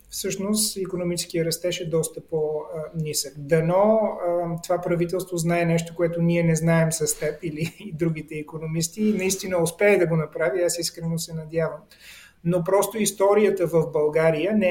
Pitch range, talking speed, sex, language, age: 155-190 Hz, 145 wpm, male, English, 30-49